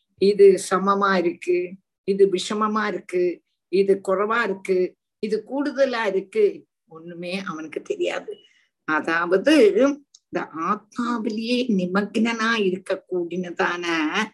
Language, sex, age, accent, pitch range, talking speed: Tamil, female, 50-69, native, 180-245 Hz, 85 wpm